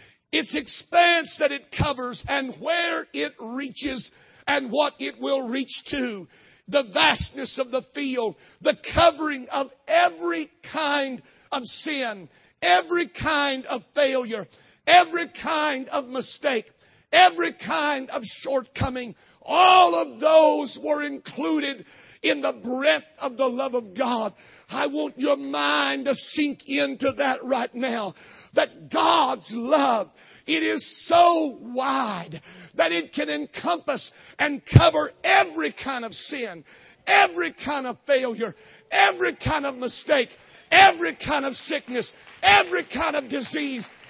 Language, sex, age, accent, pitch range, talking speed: English, male, 50-69, American, 250-300 Hz, 130 wpm